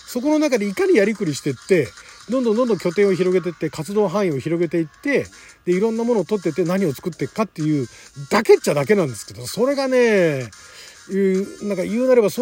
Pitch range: 155-255 Hz